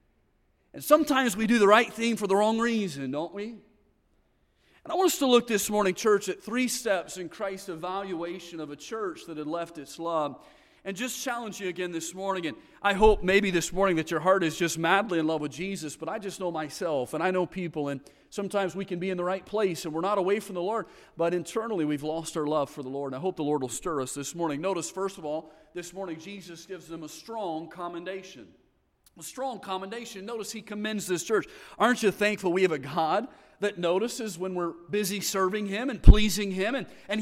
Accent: American